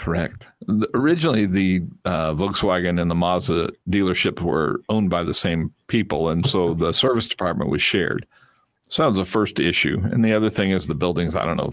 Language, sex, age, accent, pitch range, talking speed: English, male, 50-69, American, 85-100 Hz, 195 wpm